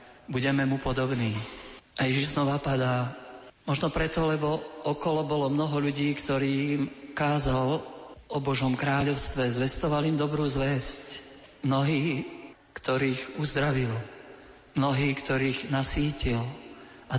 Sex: male